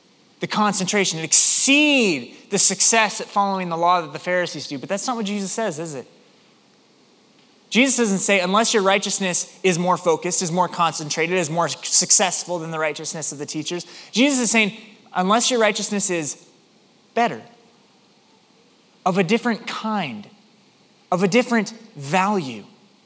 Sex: male